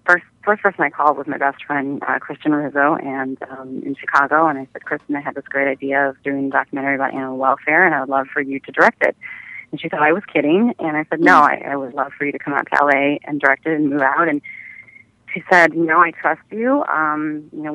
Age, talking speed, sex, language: 30-49, 260 wpm, female, English